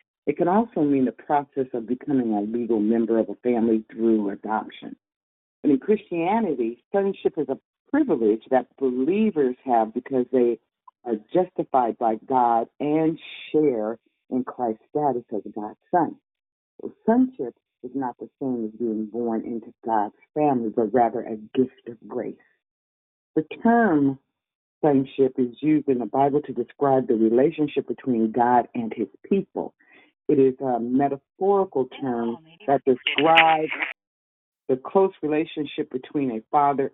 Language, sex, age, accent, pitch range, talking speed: English, female, 50-69, American, 120-150 Hz, 140 wpm